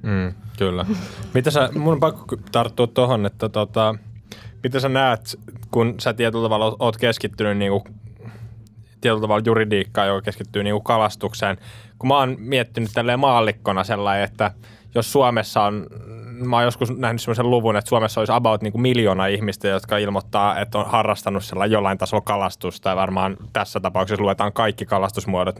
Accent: native